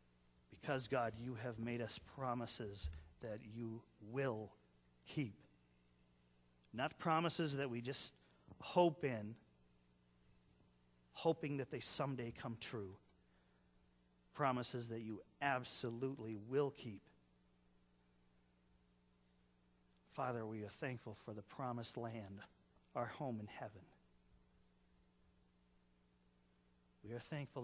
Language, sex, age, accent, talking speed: English, male, 40-59, American, 100 wpm